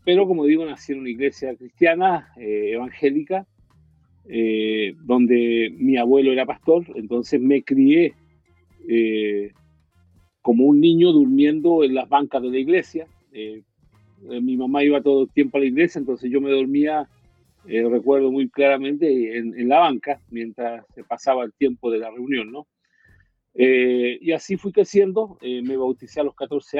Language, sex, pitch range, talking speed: Portuguese, male, 115-145 Hz, 165 wpm